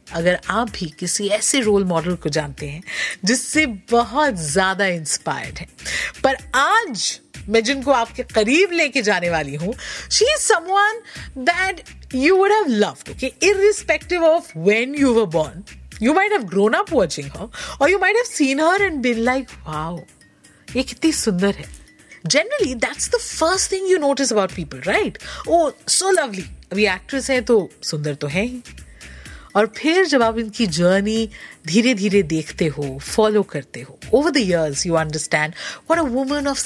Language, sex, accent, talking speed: Hindi, female, native, 125 wpm